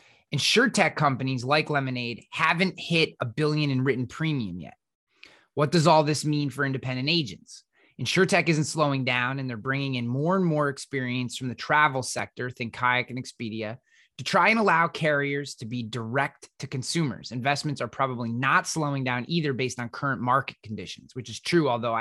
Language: English